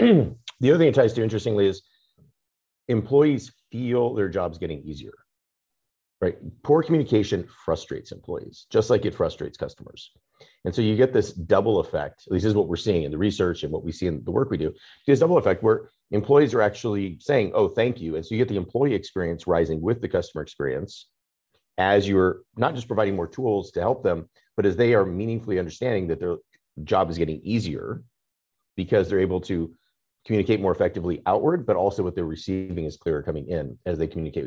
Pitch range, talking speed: 90-115 Hz, 195 wpm